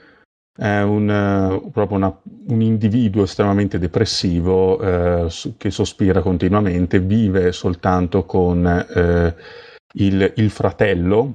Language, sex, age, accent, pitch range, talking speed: Italian, male, 30-49, native, 90-105 Hz, 80 wpm